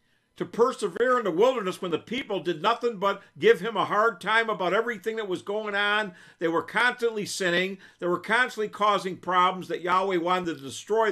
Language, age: English, 50-69